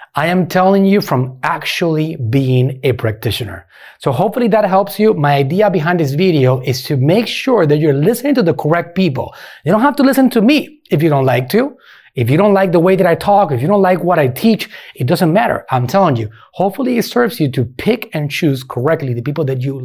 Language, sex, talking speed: English, male, 235 wpm